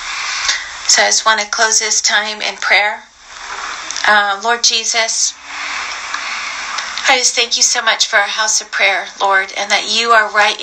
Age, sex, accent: 40-59, female, American